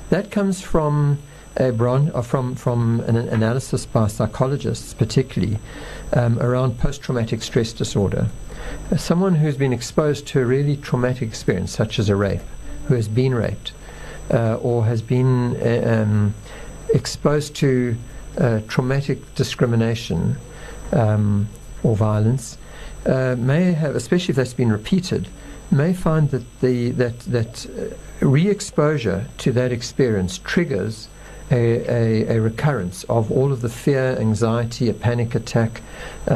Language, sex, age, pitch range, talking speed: English, male, 60-79, 115-145 Hz, 130 wpm